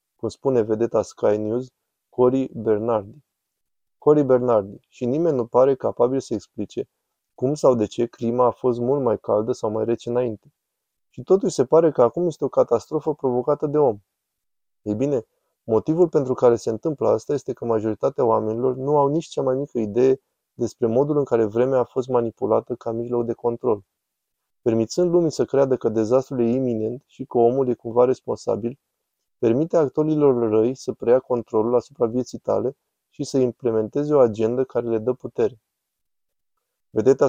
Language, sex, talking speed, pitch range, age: Romanian, male, 170 wpm, 115-135 Hz, 20-39